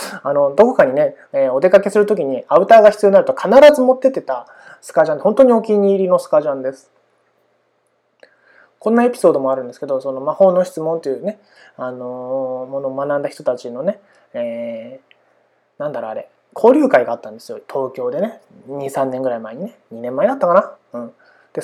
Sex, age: male, 20-39